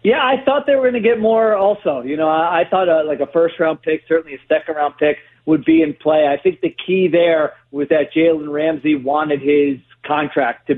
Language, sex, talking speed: English, male, 235 wpm